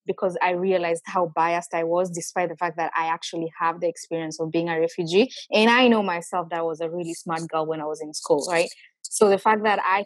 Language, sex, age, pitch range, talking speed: English, female, 20-39, 165-200 Hz, 245 wpm